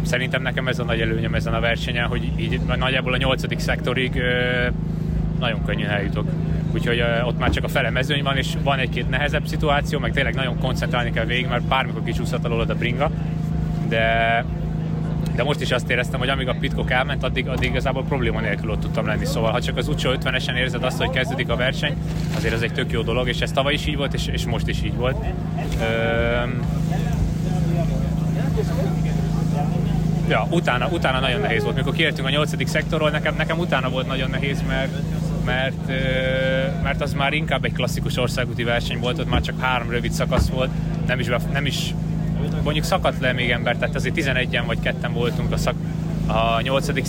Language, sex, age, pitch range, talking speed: Hungarian, male, 30-49, 140-165 Hz, 190 wpm